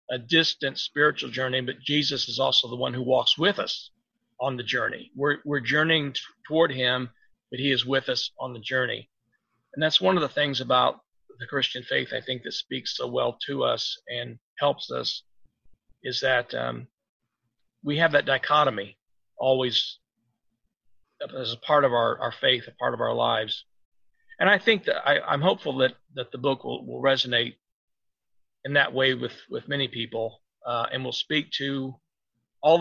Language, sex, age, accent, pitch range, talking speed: English, male, 40-59, American, 120-155 Hz, 180 wpm